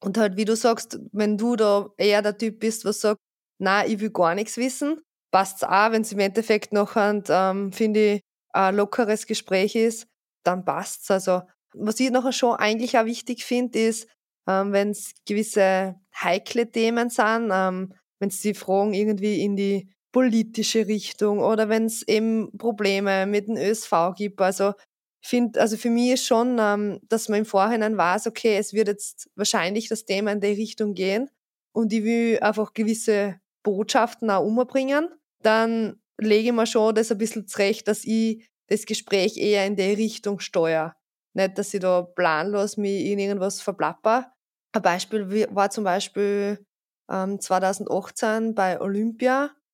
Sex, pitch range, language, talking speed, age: female, 200-225 Hz, German, 165 wpm, 20-39